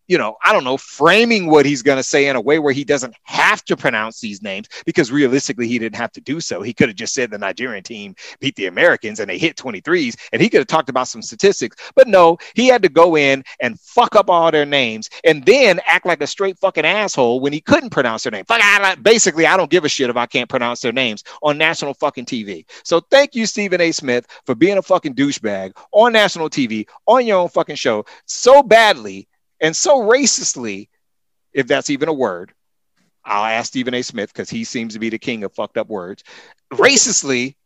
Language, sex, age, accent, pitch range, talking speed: English, male, 30-49, American, 130-200 Hz, 230 wpm